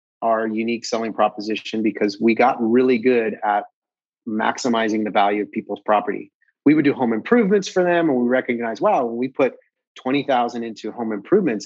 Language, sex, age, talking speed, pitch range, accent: English, male, 30-49, 175 wpm, 110-135 Hz, American